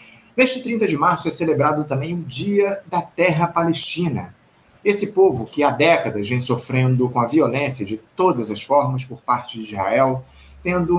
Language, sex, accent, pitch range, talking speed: Portuguese, male, Brazilian, 125-165 Hz, 170 wpm